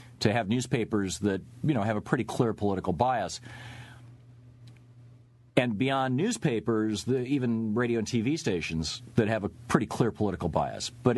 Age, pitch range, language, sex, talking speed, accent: 50-69, 100-125 Hz, English, male, 155 wpm, American